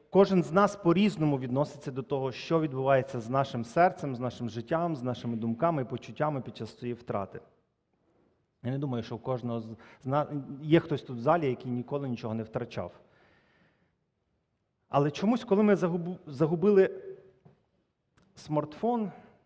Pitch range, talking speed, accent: 120-170 Hz, 140 wpm, native